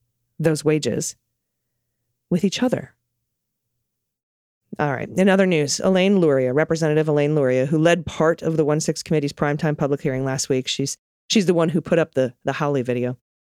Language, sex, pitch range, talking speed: English, female, 140-180 Hz, 170 wpm